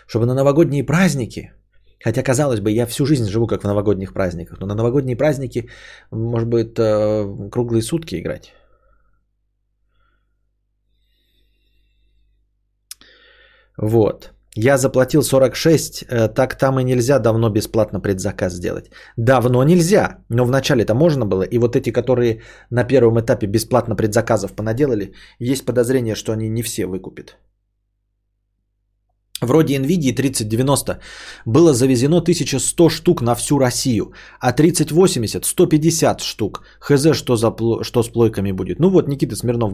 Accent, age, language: native, 30-49, Russian